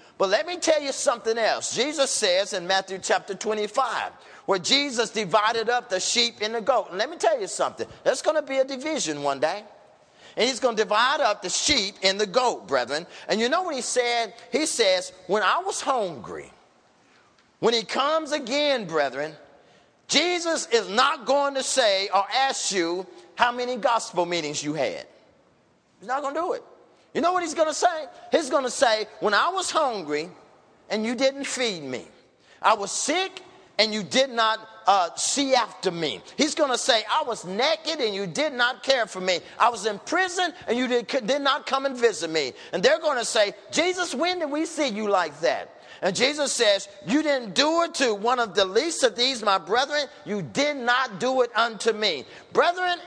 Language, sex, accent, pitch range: English, male, American, 205-295 Hz